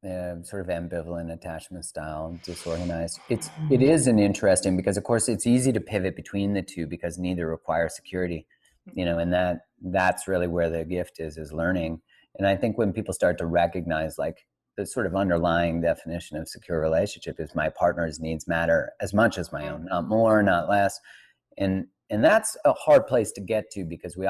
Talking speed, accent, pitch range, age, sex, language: 200 wpm, American, 85-110 Hz, 30-49, male, English